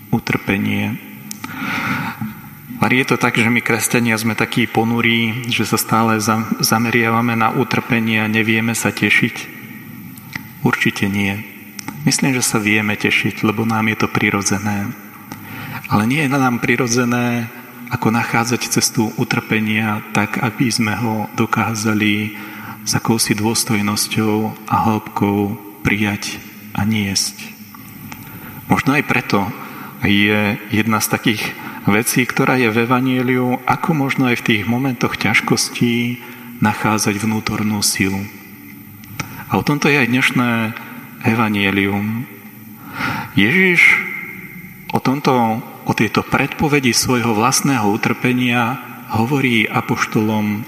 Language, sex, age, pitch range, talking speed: Slovak, male, 40-59, 105-125 Hz, 115 wpm